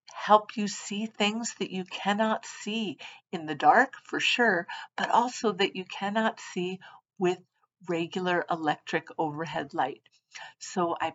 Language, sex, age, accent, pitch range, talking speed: English, female, 50-69, American, 175-210 Hz, 140 wpm